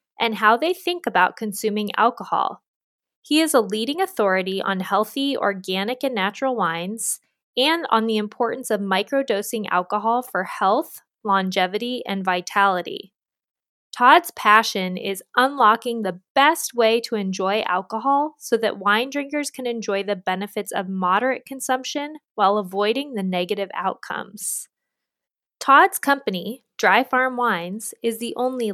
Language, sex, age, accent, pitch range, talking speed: English, female, 20-39, American, 195-255 Hz, 135 wpm